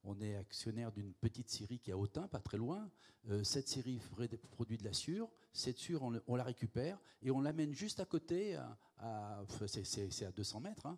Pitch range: 115-160 Hz